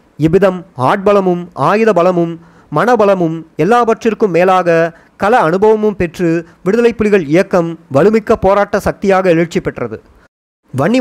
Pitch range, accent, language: 165-215 Hz, native, Tamil